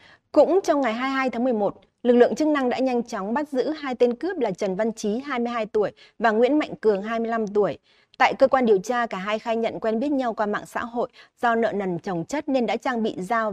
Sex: female